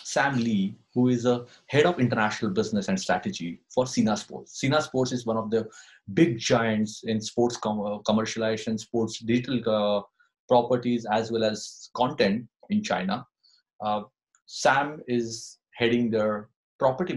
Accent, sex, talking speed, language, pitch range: Indian, male, 145 wpm, English, 105-135 Hz